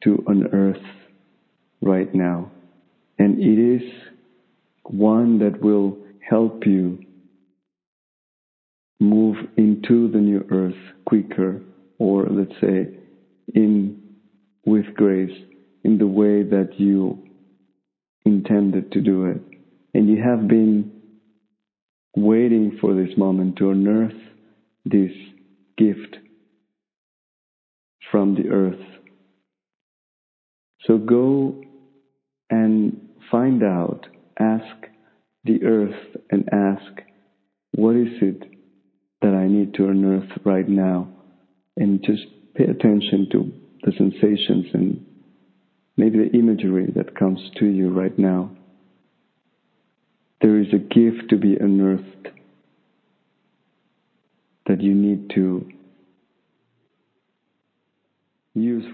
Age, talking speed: 50-69, 100 wpm